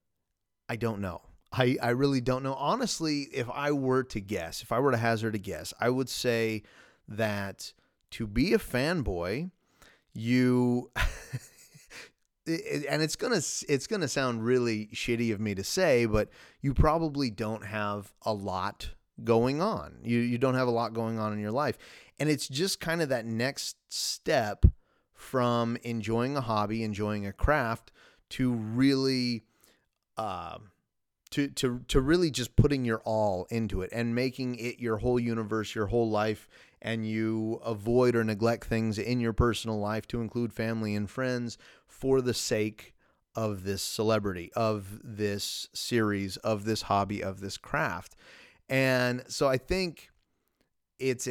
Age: 30-49